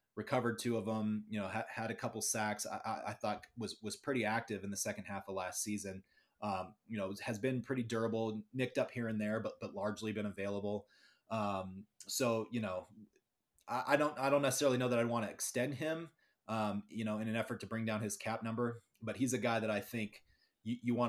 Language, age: English, 30-49